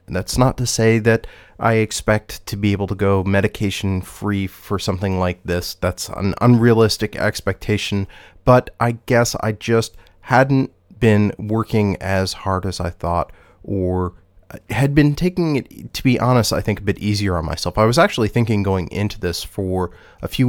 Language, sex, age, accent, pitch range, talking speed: English, male, 30-49, American, 90-115 Hz, 175 wpm